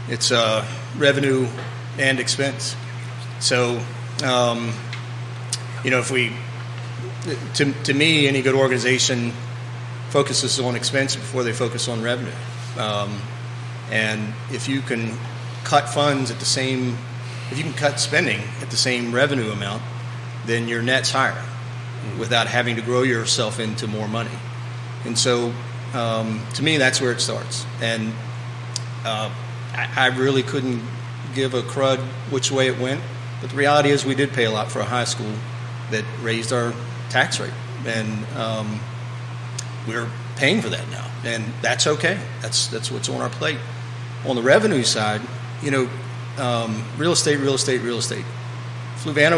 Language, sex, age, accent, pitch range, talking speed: English, male, 40-59, American, 120-130 Hz, 155 wpm